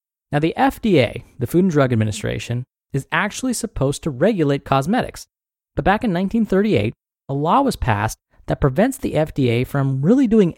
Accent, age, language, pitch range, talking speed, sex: American, 20-39, English, 125-180 Hz, 165 wpm, male